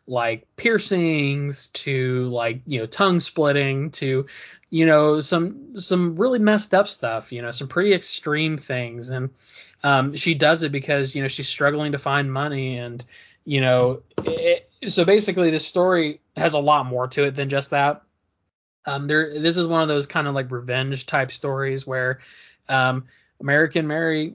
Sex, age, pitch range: male, 20-39, 130-155 Hz